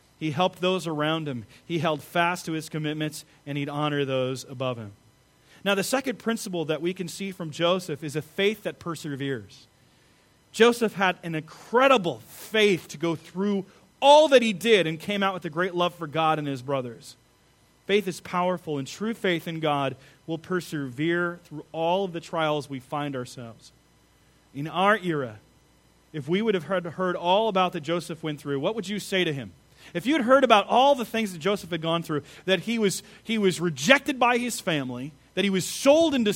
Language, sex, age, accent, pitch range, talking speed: English, male, 30-49, American, 150-205 Hz, 200 wpm